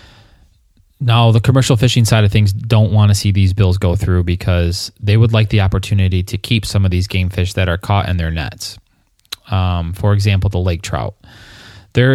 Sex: male